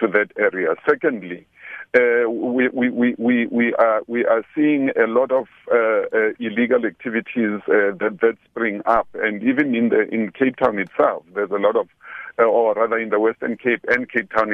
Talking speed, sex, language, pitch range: 190 wpm, male, English, 105-125 Hz